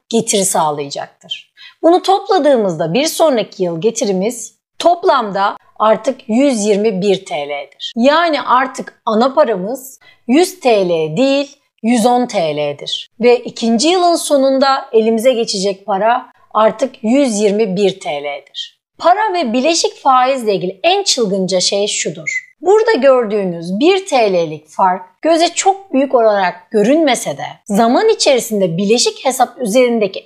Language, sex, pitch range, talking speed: Turkish, female, 195-285 Hz, 110 wpm